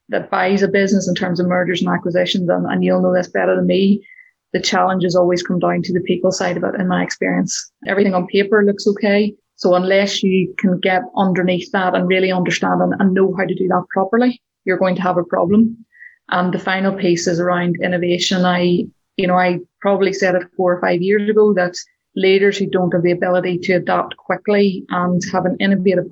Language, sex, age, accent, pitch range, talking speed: English, female, 20-39, Irish, 180-195 Hz, 210 wpm